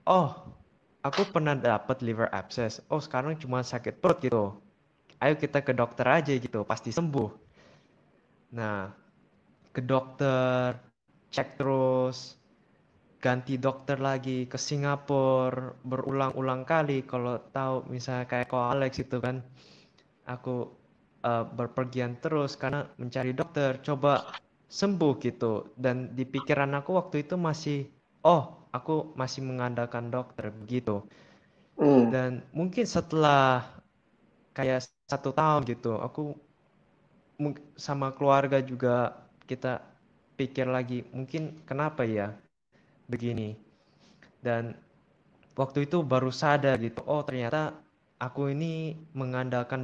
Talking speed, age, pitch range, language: 110 wpm, 20-39, 125-145 Hz, Indonesian